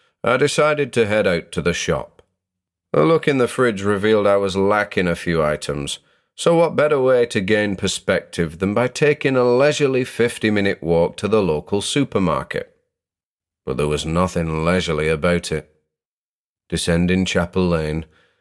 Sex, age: male, 40-59